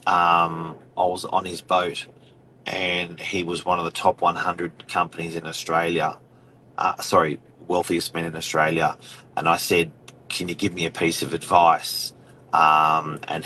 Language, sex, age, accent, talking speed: English, male, 30-49, Australian, 160 wpm